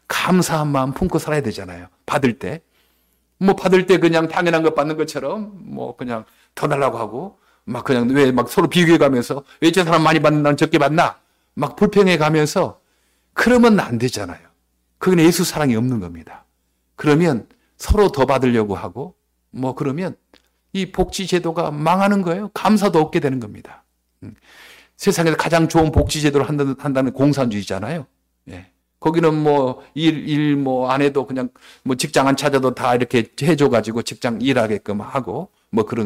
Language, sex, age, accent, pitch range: Korean, male, 50-69, native, 115-165 Hz